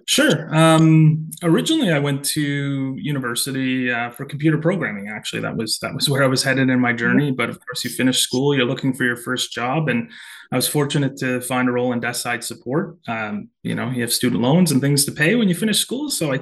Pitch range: 120-155 Hz